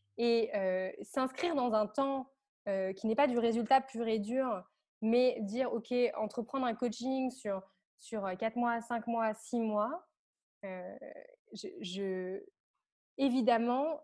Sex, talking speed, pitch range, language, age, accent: female, 140 wpm, 205-250 Hz, French, 20-39, French